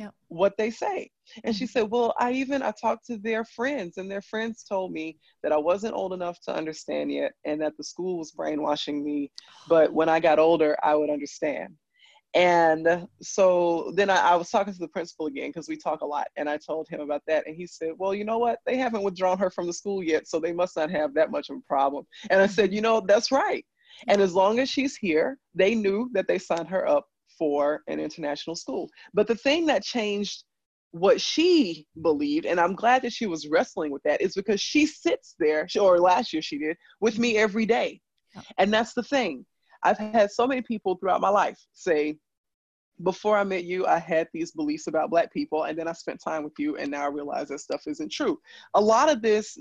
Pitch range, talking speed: 160-230 Hz, 225 wpm